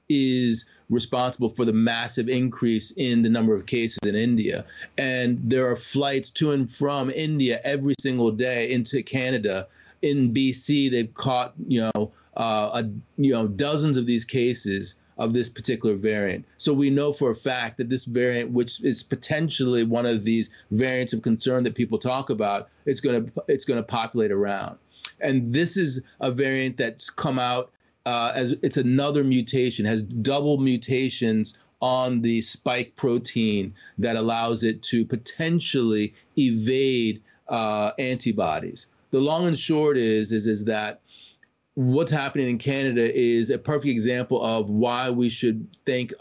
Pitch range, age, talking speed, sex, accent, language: 115-135 Hz, 30-49, 155 wpm, male, American, English